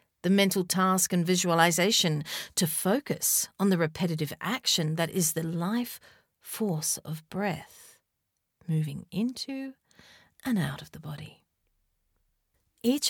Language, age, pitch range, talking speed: English, 40-59, 160-215 Hz, 120 wpm